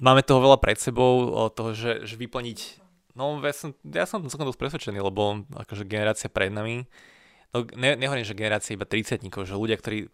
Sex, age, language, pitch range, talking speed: male, 20-39, Slovak, 100-115 Hz, 195 wpm